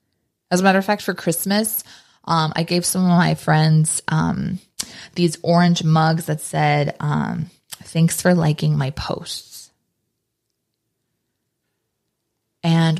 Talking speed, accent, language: 125 wpm, American, English